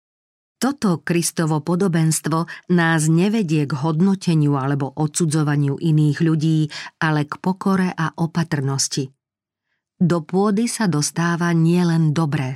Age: 40-59